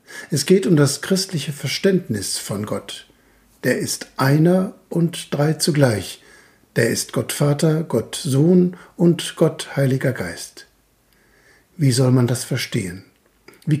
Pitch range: 130-170 Hz